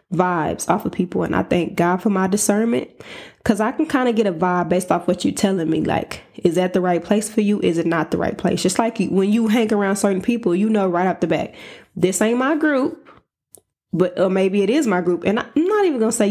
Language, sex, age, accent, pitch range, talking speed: English, female, 20-39, American, 180-220 Hz, 260 wpm